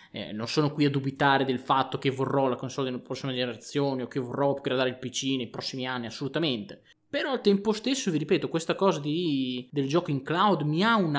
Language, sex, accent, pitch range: Italian, male, native, 125-160 Hz